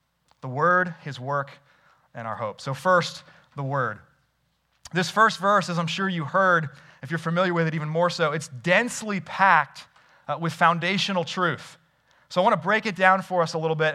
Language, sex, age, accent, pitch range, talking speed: English, male, 30-49, American, 165-205 Hz, 200 wpm